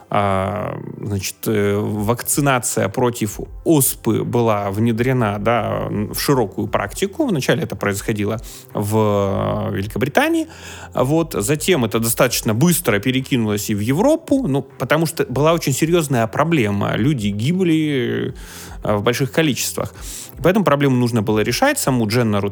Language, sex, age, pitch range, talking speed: Russian, male, 20-39, 110-155 Hz, 110 wpm